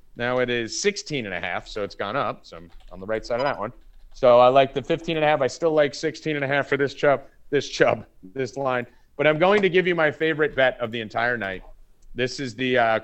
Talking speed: 270 wpm